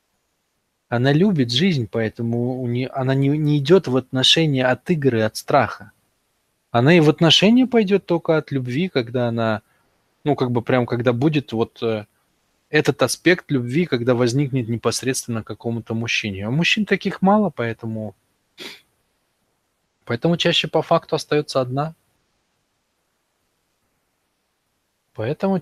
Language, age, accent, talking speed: Russian, 20-39, native, 125 wpm